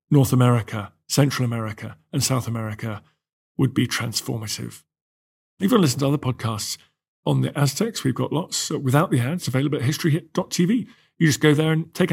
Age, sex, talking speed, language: 40-59, male, 180 wpm, English